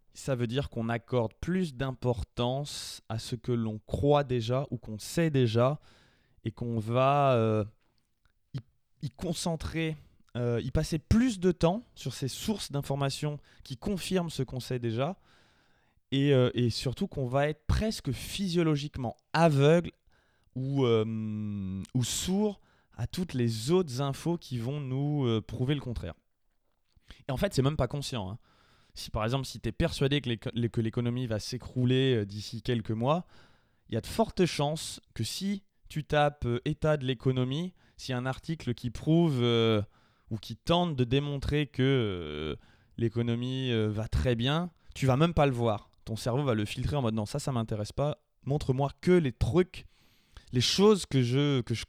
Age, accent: 20-39, French